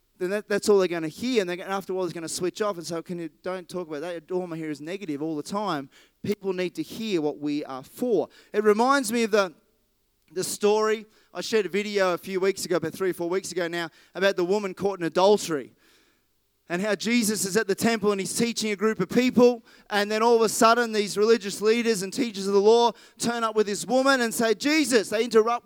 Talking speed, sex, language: 255 wpm, male, English